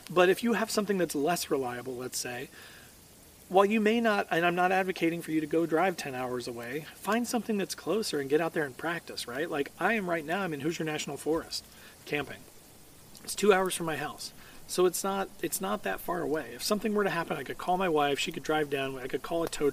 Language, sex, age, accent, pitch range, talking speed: English, male, 40-59, American, 140-180 Hz, 245 wpm